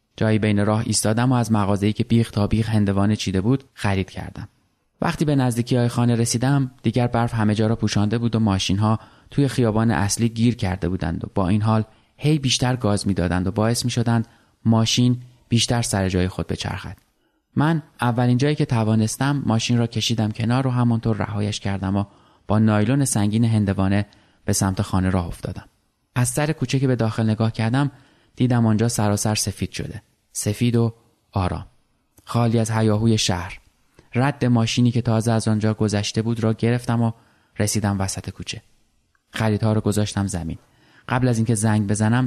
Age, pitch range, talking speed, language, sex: 20-39, 105-120 Hz, 170 wpm, Persian, male